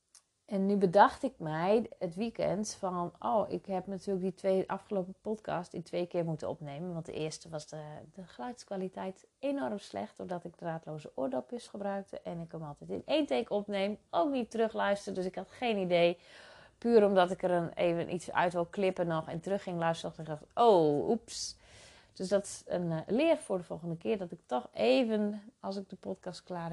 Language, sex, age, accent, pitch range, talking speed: Dutch, female, 30-49, Dutch, 170-215 Hz, 200 wpm